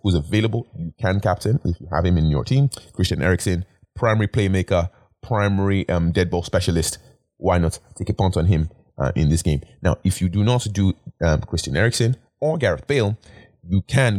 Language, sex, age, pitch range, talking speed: English, male, 30-49, 85-110 Hz, 195 wpm